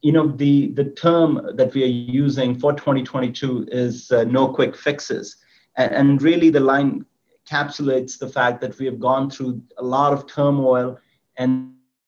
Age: 30-49